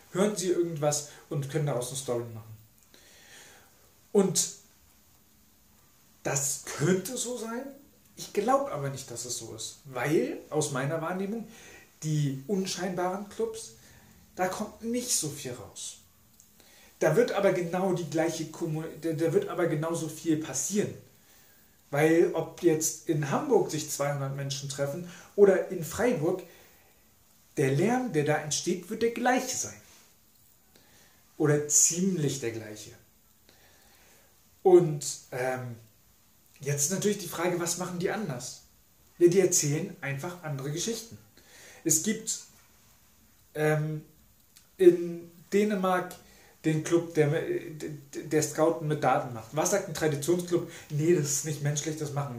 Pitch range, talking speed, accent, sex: 125-180 Hz, 130 wpm, German, male